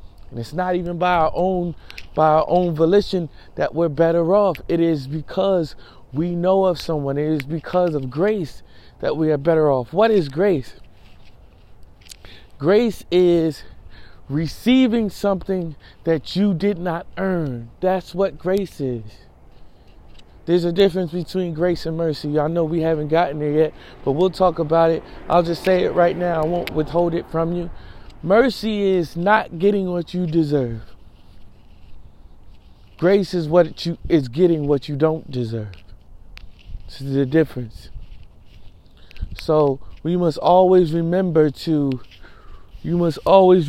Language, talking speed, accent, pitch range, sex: English, 145 wpm, American, 125-175 Hz, male